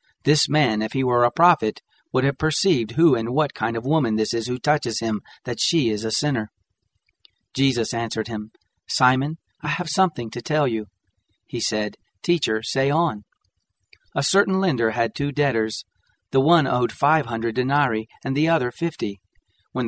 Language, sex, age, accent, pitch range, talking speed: English, male, 40-59, American, 115-145 Hz, 175 wpm